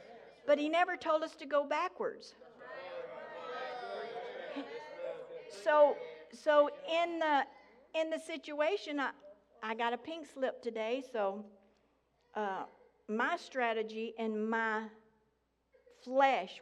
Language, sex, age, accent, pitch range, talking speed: English, female, 50-69, American, 220-295 Hz, 105 wpm